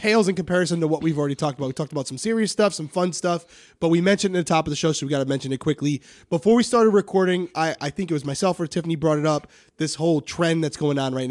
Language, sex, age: English, male, 20-39